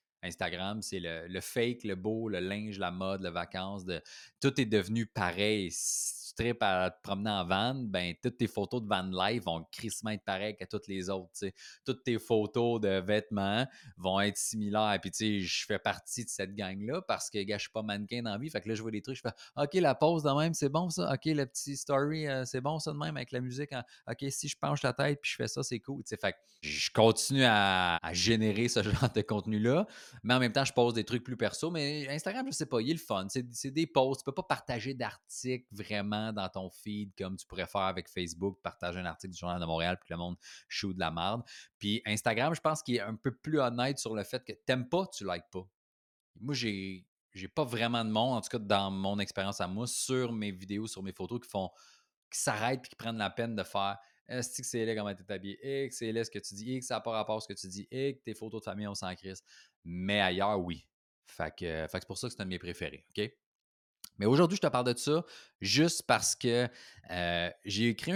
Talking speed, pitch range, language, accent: 255 wpm, 95-125 Hz, French, Canadian